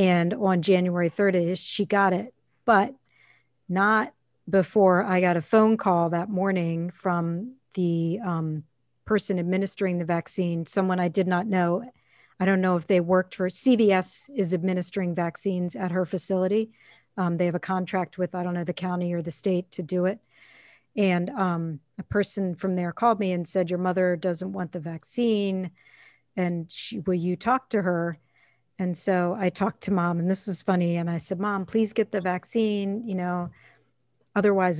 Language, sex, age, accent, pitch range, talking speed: English, female, 40-59, American, 180-200 Hz, 180 wpm